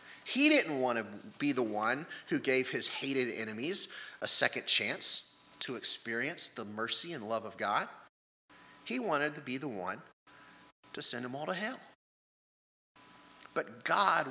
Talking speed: 155 wpm